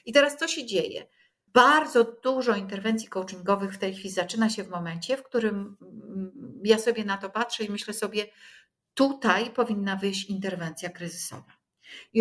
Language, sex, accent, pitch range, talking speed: Polish, female, native, 190-240 Hz, 155 wpm